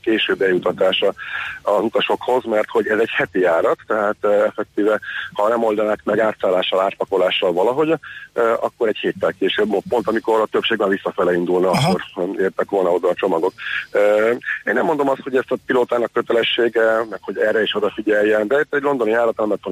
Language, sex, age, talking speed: Hungarian, male, 40-59, 175 wpm